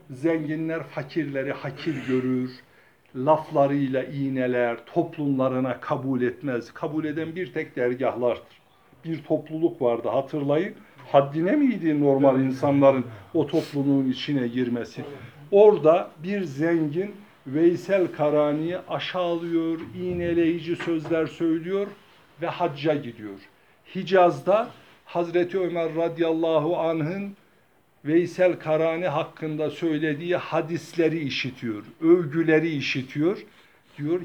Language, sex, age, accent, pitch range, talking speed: Turkish, male, 60-79, native, 135-165 Hz, 90 wpm